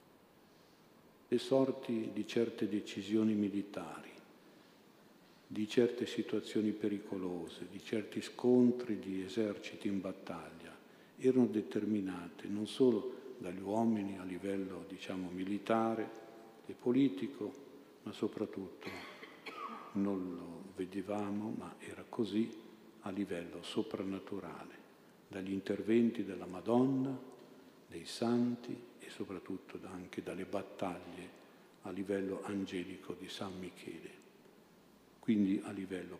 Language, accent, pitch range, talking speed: Italian, native, 95-115 Hz, 100 wpm